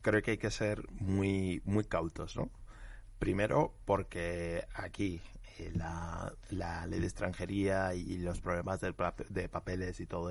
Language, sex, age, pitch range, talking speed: Spanish, male, 20-39, 90-105 Hz, 140 wpm